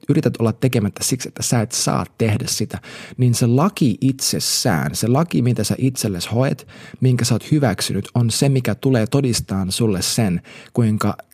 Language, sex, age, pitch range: Finnish, male, 30-49, 105-130 Hz